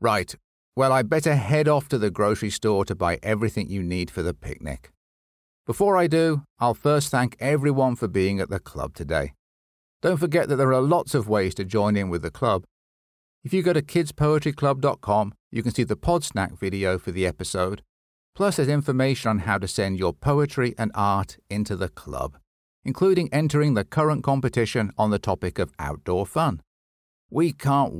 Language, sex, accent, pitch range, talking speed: English, male, British, 90-145 Hz, 185 wpm